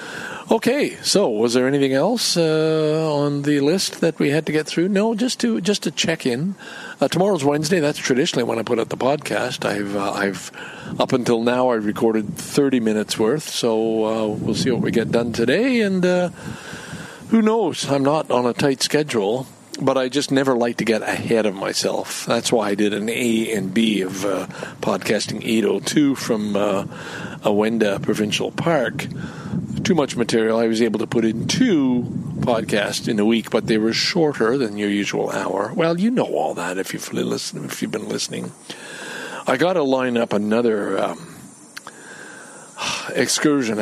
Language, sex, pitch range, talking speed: English, male, 110-155 Hz, 180 wpm